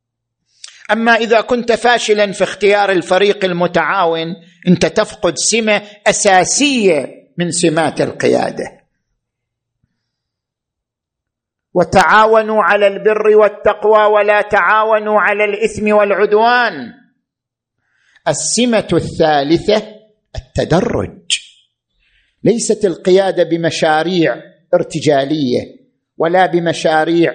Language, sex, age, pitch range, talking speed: Arabic, male, 50-69, 175-240 Hz, 70 wpm